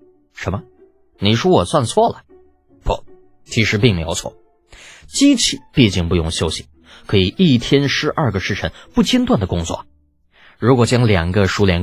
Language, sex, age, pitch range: Chinese, male, 20-39, 90-130 Hz